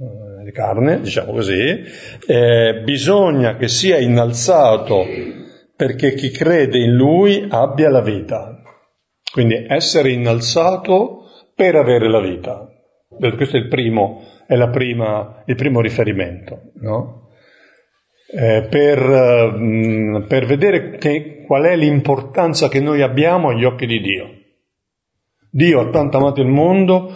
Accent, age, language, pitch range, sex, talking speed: native, 50-69, Italian, 120-155 Hz, male, 125 wpm